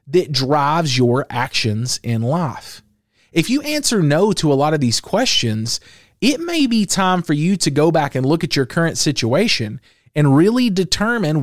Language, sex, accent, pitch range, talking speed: English, male, American, 125-190 Hz, 180 wpm